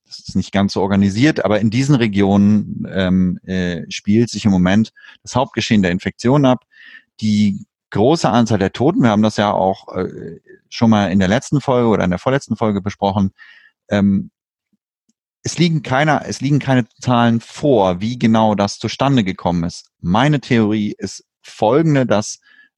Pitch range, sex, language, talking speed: 100-125 Hz, male, German, 170 wpm